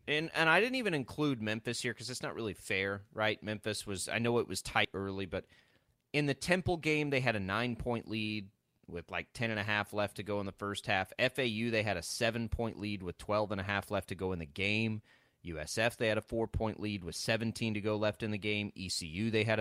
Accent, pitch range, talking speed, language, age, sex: American, 100-120 Hz, 225 wpm, English, 30-49, male